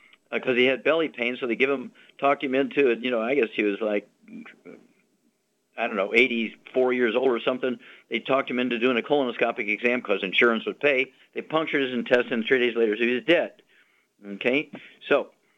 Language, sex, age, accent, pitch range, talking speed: English, male, 50-69, American, 120-145 Hz, 210 wpm